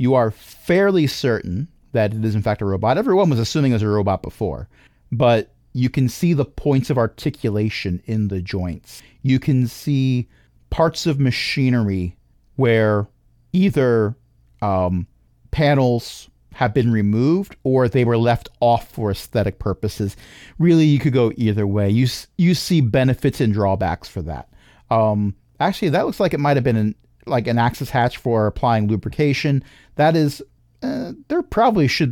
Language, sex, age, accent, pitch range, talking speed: English, male, 40-59, American, 105-140 Hz, 165 wpm